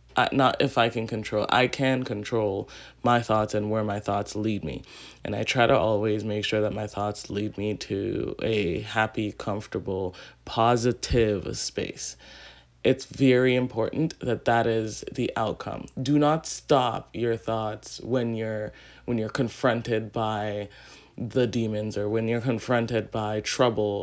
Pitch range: 105-130 Hz